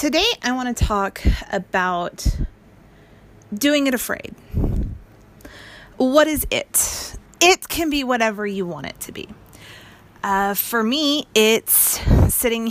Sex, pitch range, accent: female, 180-250 Hz, American